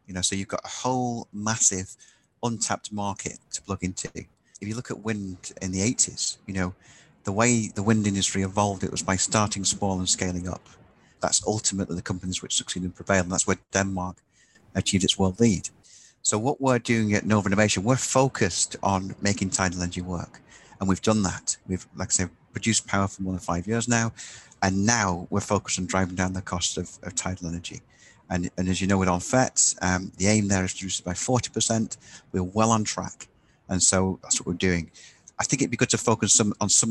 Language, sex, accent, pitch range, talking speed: English, male, British, 95-110 Hz, 215 wpm